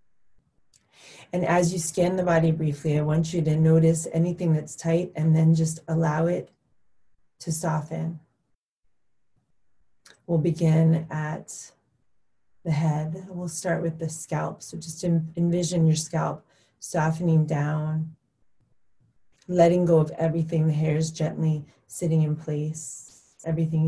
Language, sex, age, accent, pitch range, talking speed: English, female, 30-49, American, 150-165 Hz, 130 wpm